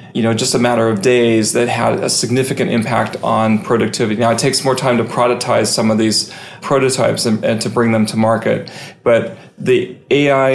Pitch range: 115-130 Hz